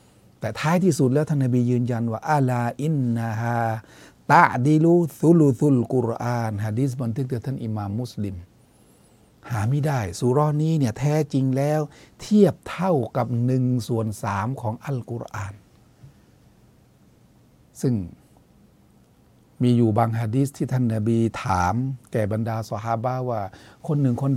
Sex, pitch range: male, 115-140 Hz